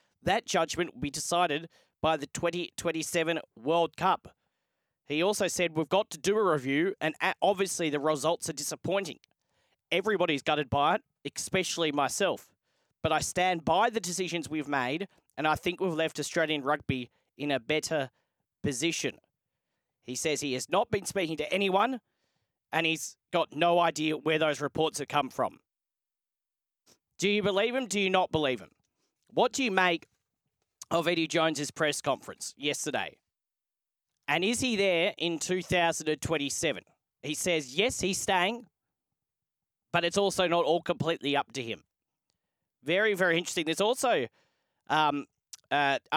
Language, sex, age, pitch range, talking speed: English, male, 40-59, 150-180 Hz, 150 wpm